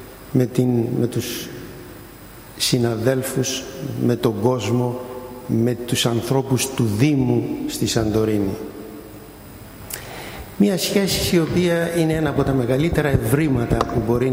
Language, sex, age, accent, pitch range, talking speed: Greek, male, 60-79, native, 115-140 Hz, 115 wpm